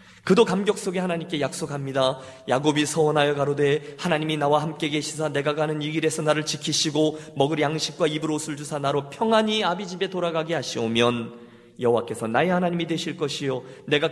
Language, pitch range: Korean, 150-215 Hz